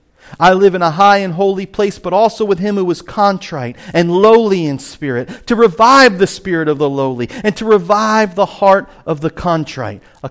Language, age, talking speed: English, 40-59, 205 wpm